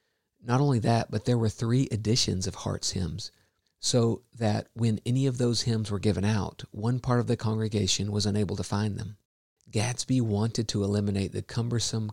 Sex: male